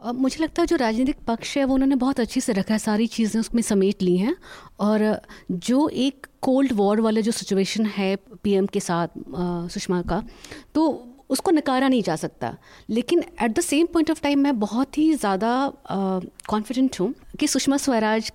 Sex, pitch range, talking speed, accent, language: female, 205-275 Hz, 185 wpm, native, Hindi